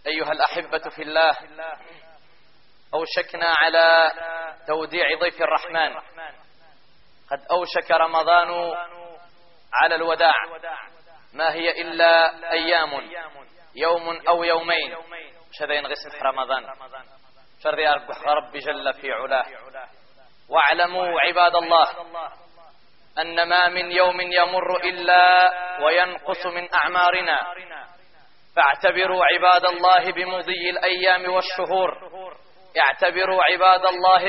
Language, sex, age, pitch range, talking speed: Arabic, male, 30-49, 165-190 Hz, 90 wpm